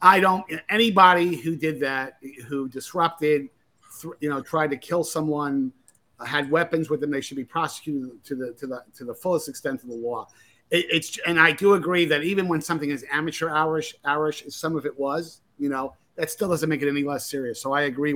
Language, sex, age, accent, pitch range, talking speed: English, male, 50-69, American, 140-175 Hz, 215 wpm